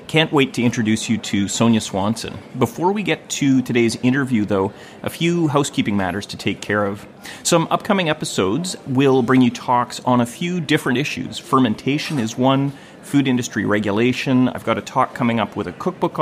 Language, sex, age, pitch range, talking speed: English, male, 30-49, 110-150 Hz, 185 wpm